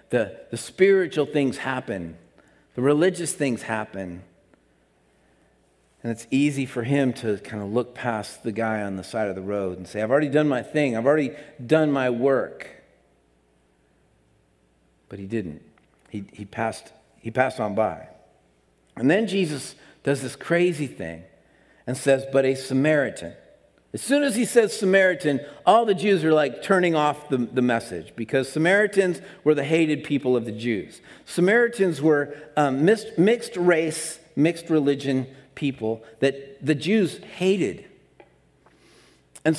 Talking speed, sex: 150 wpm, male